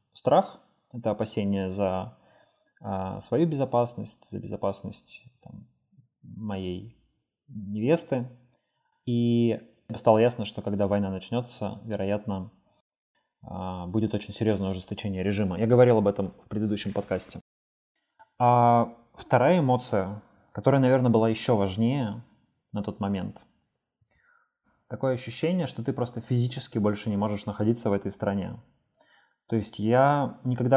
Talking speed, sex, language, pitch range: 115 wpm, male, Russian, 105-125 Hz